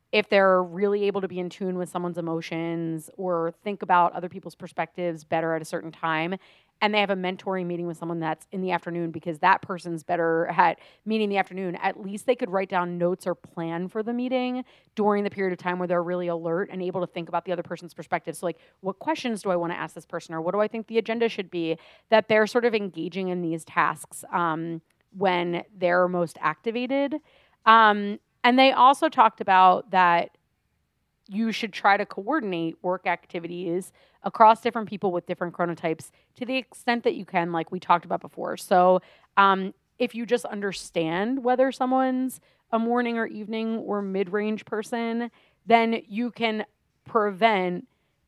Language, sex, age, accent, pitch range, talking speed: English, female, 30-49, American, 175-220 Hz, 195 wpm